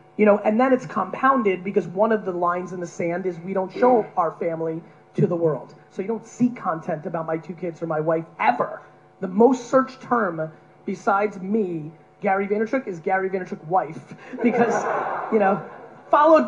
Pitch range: 180-225 Hz